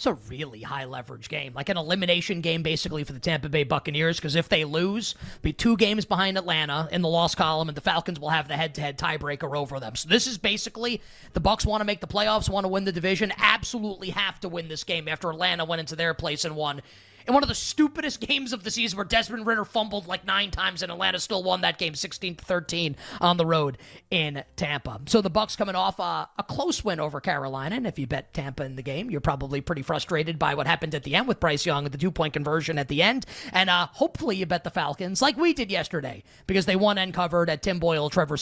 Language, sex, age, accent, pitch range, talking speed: English, male, 30-49, American, 155-205 Hz, 245 wpm